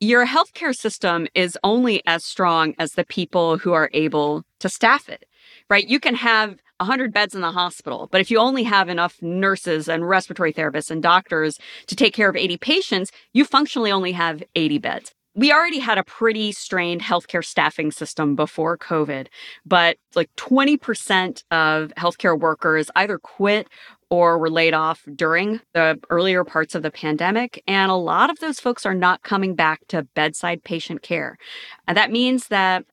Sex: female